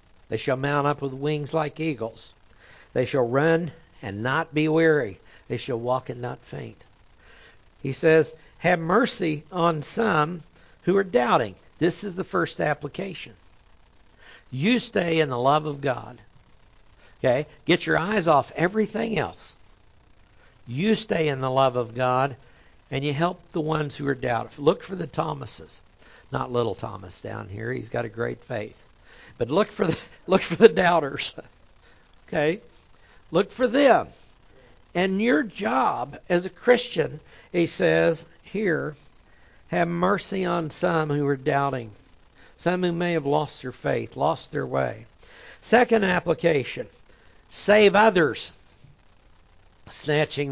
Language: English